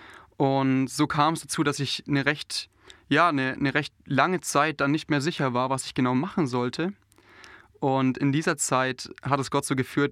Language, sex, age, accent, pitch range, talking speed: German, male, 20-39, German, 130-150 Hz, 200 wpm